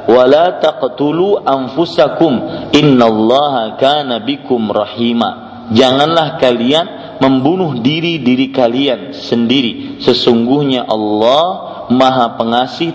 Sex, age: male, 40-59